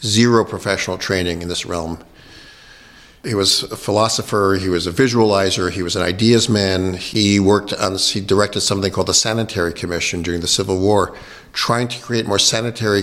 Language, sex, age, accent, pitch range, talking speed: English, male, 50-69, American, 90-110 Hz, 175 wpm